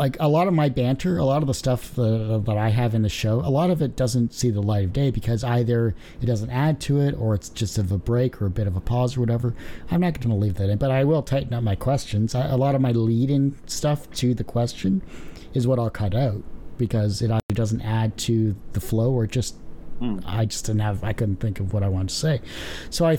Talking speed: 260 wpm